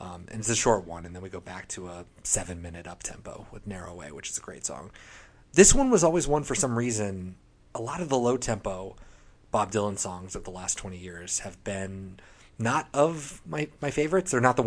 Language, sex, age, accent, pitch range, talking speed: English, male, 30-49, American, 100-130 Hz, 220 wpm